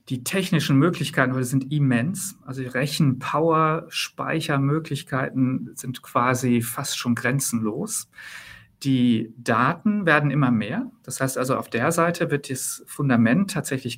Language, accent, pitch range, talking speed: German, German, 125-165 Hz, 120 wpm